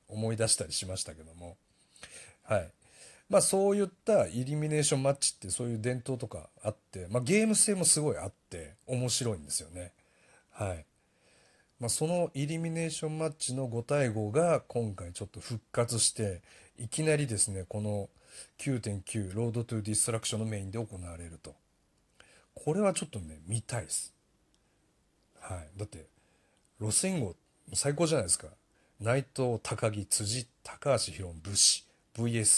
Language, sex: Japanese, male